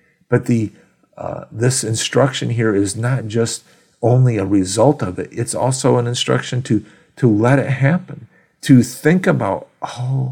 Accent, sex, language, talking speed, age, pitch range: American, male, English, 155 wpm, 50-69, 105-140 Hz